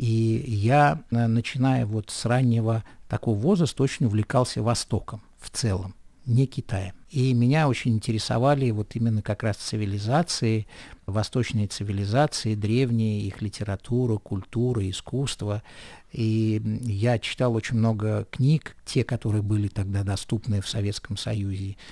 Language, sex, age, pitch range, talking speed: Russian, male, 50-69, 105-125 Hz, 125 wpm